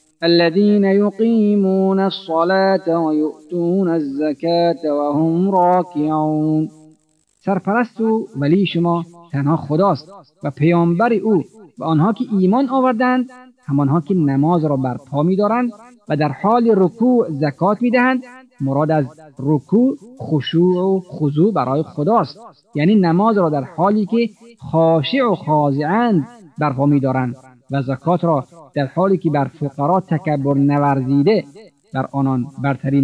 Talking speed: 120 wpm